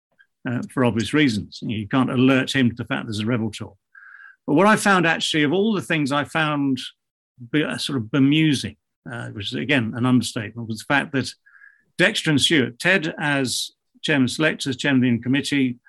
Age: 50-69